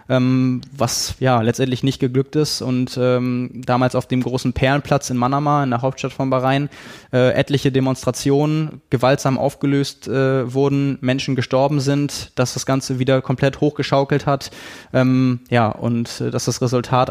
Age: 20-39